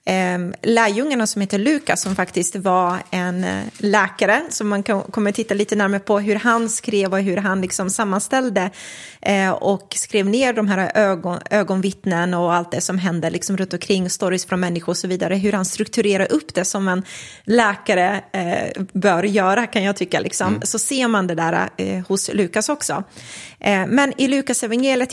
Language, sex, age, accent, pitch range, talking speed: Swedish, female, 20-39, native, 190-230 Hz, 170 wpm